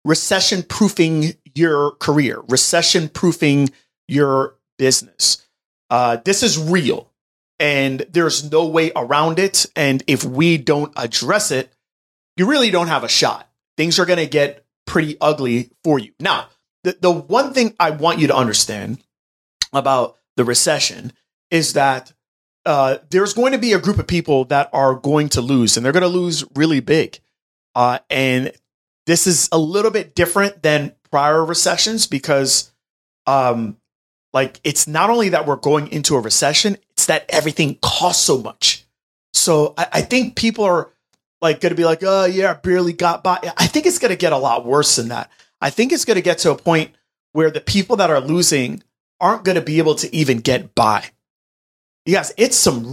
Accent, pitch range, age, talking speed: American, 135-180 Hz, 30-49, 175 wpm